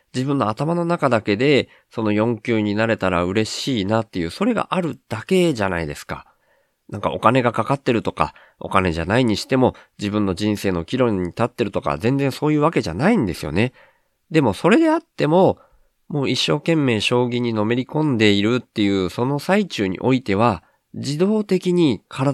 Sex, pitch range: male, 95-145 Hz